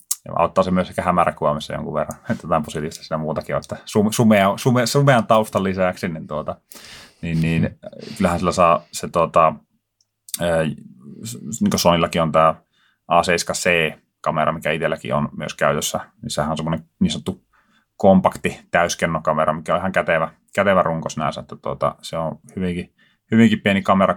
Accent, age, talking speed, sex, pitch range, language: native, 30-49, 155 wpm, male, 80-100 Hz, Finnish